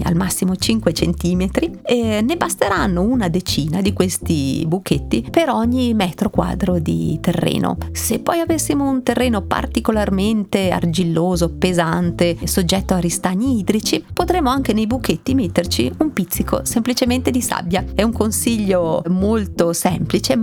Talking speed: 130 wpm